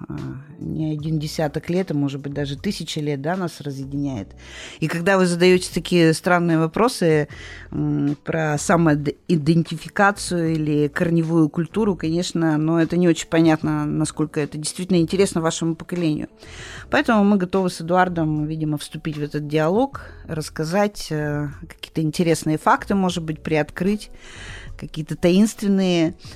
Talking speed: 130 wpm